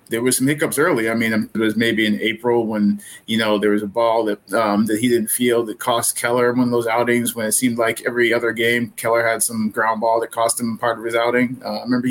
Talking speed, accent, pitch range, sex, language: 270 wpm, American, 110-125 Hz, male, English